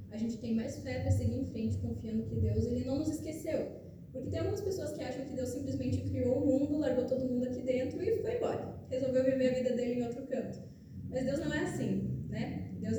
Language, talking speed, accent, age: Portuguese, 235 wpm, Brazilian, 10-29